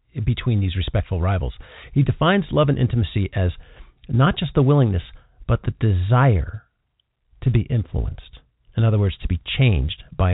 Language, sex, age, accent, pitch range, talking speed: English, male, 50-69, American, 95-130 Hz, 155 wpm